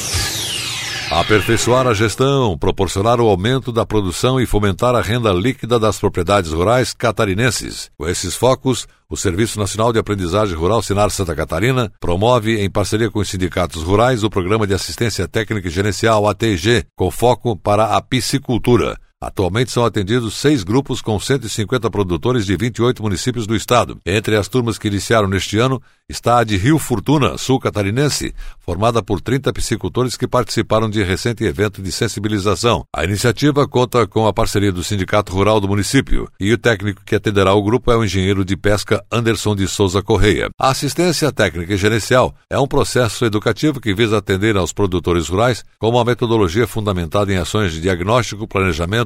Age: 60-79